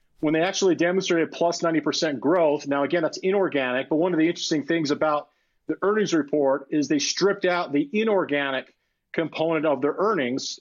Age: 40-59